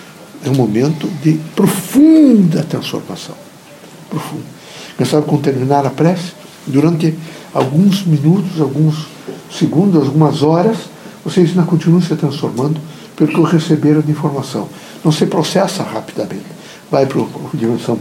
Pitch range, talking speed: 150-180 Hz, 120 wpm